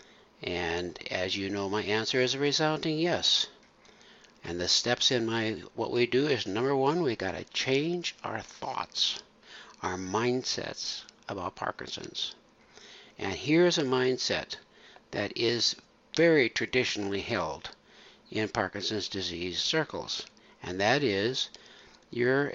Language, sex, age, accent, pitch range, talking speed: English, male, 60-79, American, 105-135 Hz, 130 wpm